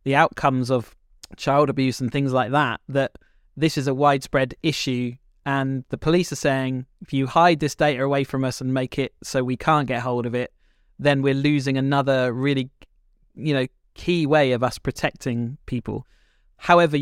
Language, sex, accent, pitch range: English, male, British, 125-145 Hz